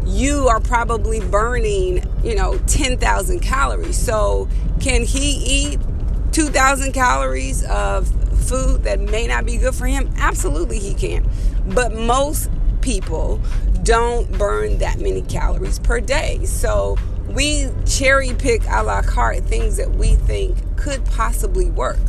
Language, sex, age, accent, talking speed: English, female, 30-49, American, 135 wpm